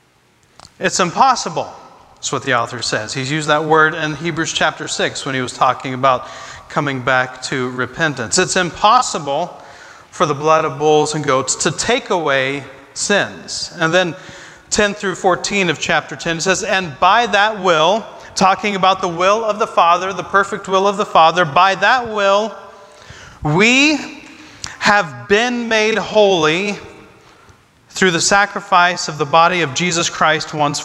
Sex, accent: male, American